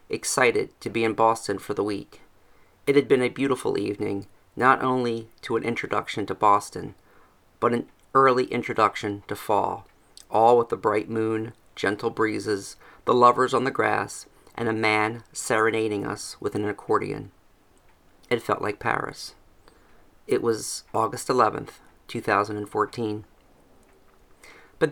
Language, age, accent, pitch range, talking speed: English, 40-59, American, 100-120 Hz, 135 wpm